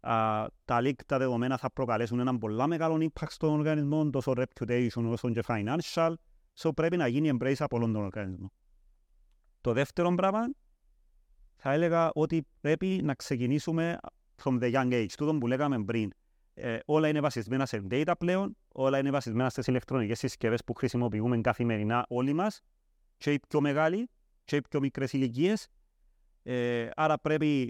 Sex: male